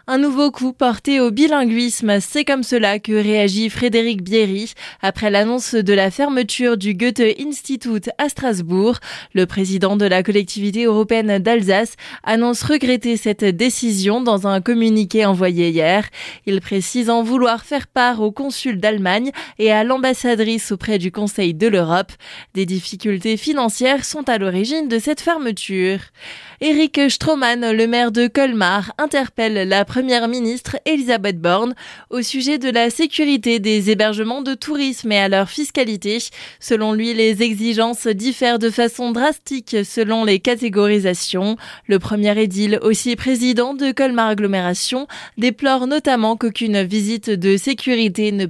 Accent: French